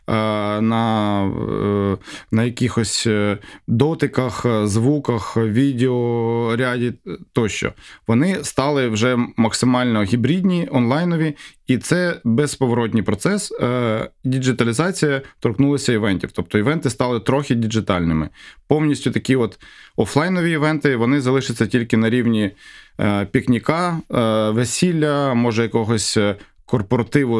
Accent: native